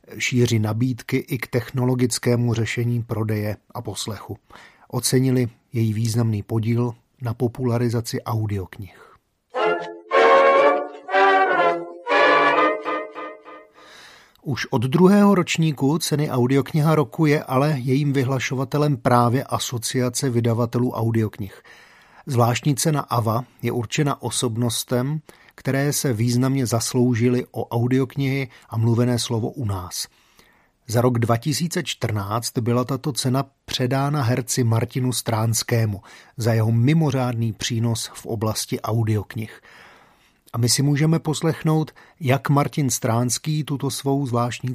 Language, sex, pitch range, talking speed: Slovak, male, 115-135 Hz, 100 wpm